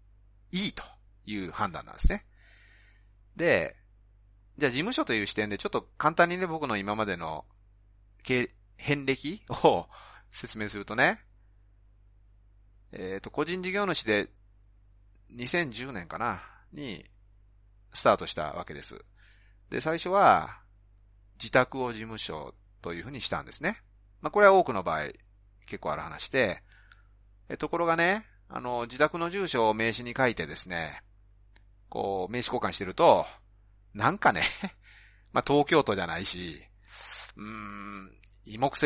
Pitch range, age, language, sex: 100-125 Hz, 30-49, Japanese, male